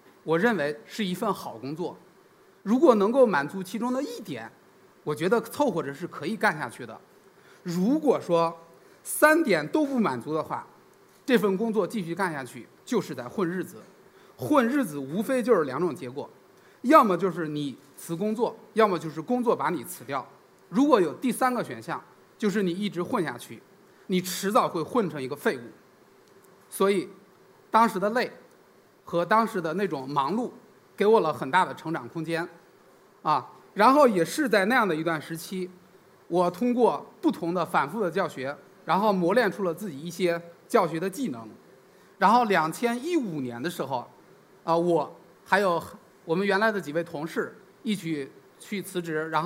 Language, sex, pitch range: Chinese, male, 170-225 Hz